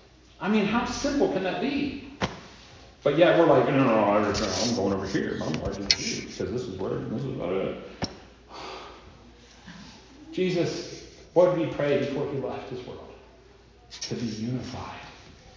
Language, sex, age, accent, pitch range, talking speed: English, male, 40-59, American, 115-170 Hz, 160 wpm